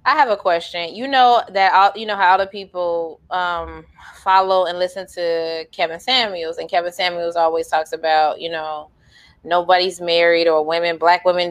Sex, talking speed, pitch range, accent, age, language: female, 175 wpm, 180-240 Hz, American, 20-39, English